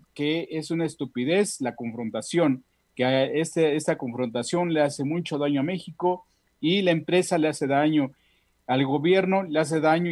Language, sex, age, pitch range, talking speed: Spanish, male, 40-59, 130-165 Hz, 160 wpm